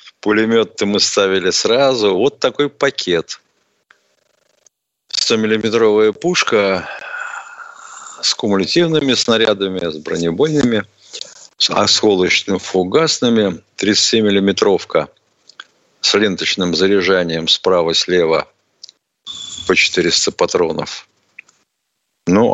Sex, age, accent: male, 50-69, native